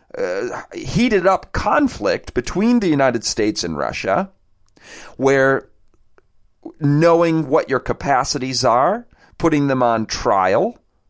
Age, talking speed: 30-49, 110 wpm